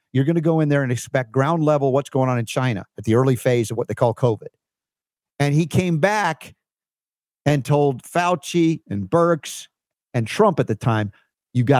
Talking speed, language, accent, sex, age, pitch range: 205 wpm, English, American, male, 50-69, 125-160 Hz